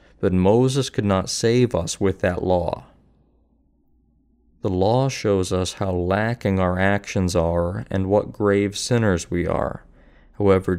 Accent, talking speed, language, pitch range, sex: American, 140 wpm, English, 90-105 Hz, male